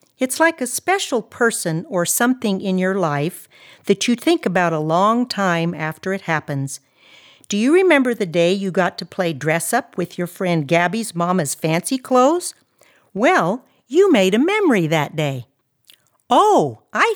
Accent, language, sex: American, English, female